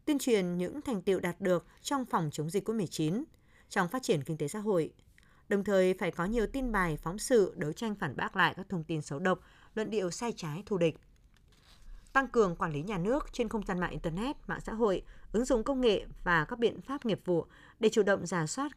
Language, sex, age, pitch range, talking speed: Vietnamese, female, 20-39, 165-230 Hz, 235 wpm